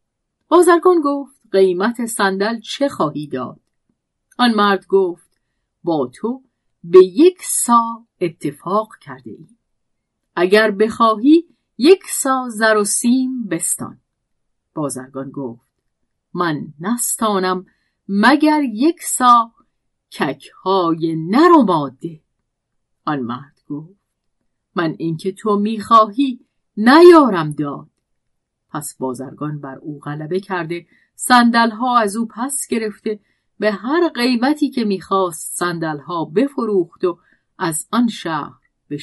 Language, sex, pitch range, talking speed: Persian, female, 160-245 Hz, 105 wpm